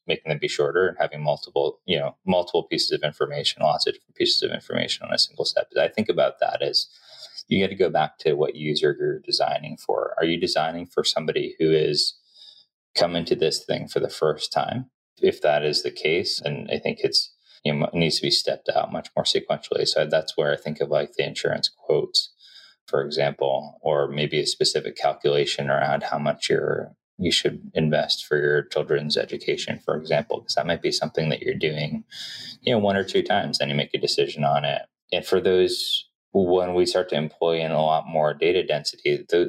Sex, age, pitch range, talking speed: male, 20-39, 300-430 Hz, 215 wpm